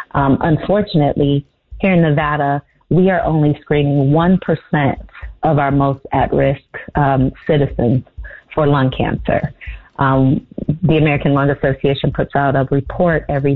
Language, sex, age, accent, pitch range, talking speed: English, female, 30-49, American, 140-180 Hz, 135 wpm